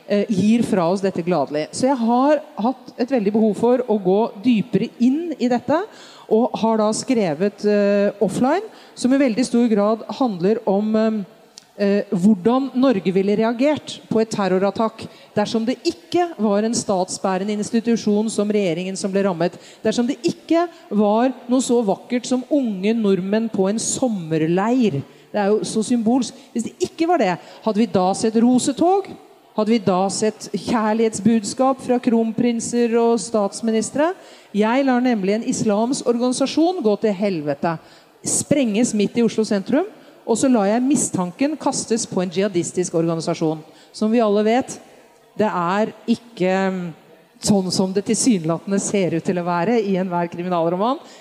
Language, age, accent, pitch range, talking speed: Swedish, 40-59, Norwegian, 200-245 Hz, 155 wpm